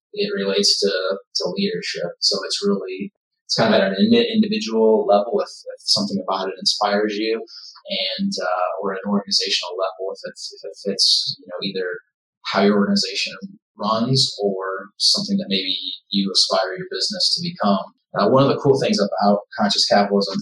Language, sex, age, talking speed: English, male, 30-49, 175 wpm